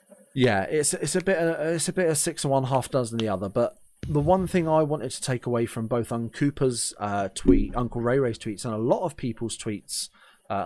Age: 30-49